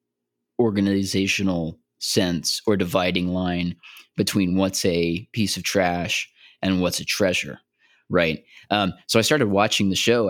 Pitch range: 85-100 Hz